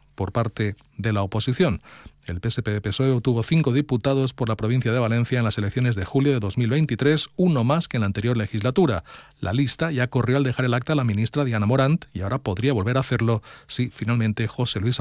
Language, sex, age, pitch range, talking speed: Spanish, male, 40-59, 110-145 Hz, 205 wpm